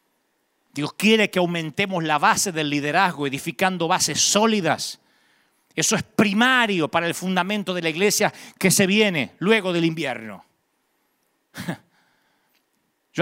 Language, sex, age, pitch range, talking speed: Spanish, male, 40-59, 155-195 Hz, 125 wpm